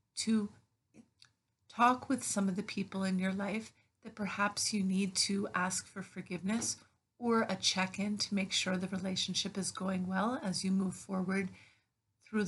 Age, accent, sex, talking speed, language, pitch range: 50-69, American, female, 165 wpm, English, 155-200 Hz